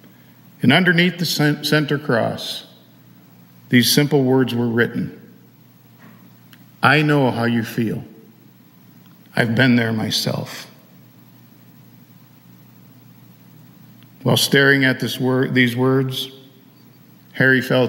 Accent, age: American, 50-69